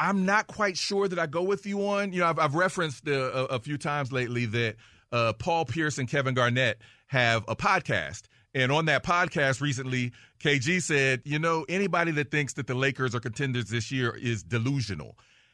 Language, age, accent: English, 40-59, American